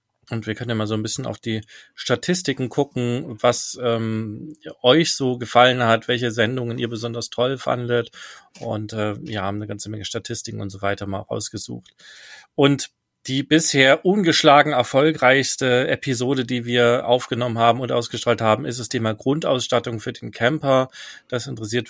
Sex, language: male, German